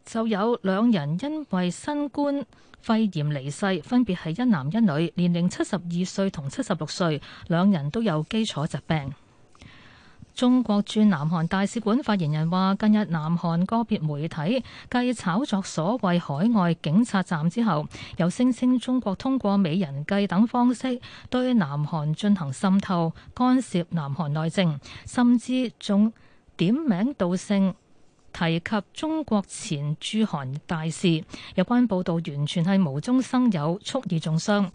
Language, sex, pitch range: Chinese, female, 165-230 Hz